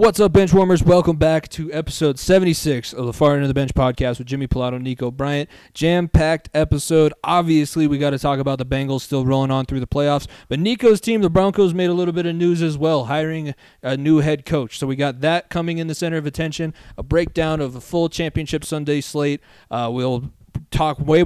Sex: male